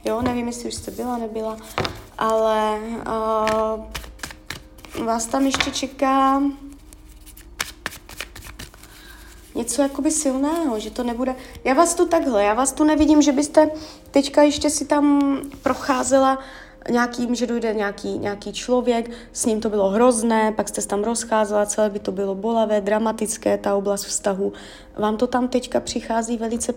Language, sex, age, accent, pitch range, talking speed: Czech, female, 20-39, native, 215-270 Hz, 145 wpm